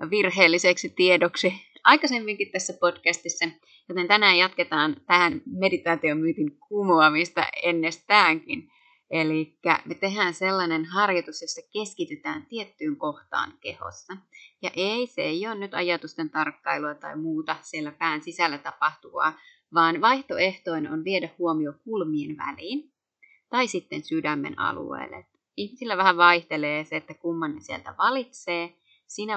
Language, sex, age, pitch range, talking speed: Finnish, female, 30-49, 165-210 Hz, 115 wpm